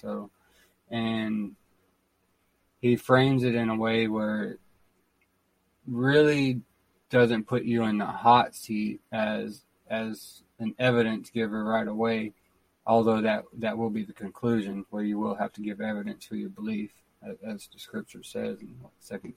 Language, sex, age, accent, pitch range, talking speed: English, male, 20-39, American, 95-115 Hz, 150 wpm